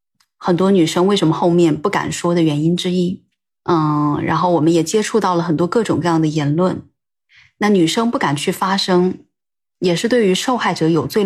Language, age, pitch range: Chinese, 20-39, 165-205 Hz